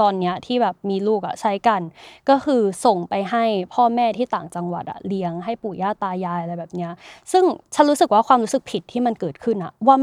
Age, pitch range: 20-39, 200-260 Hz